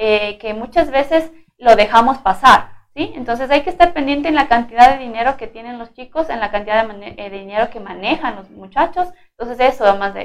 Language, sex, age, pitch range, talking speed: Spanish, female, 20-39, 225-280 Hz, 215 wpm